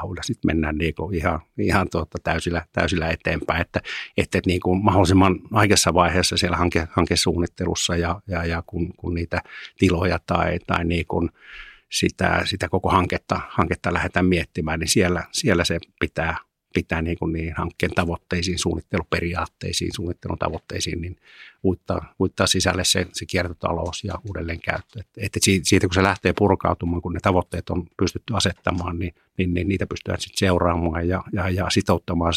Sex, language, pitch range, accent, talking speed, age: male, Finnish, 85-95 Hz, native, 145 wpm, 50-69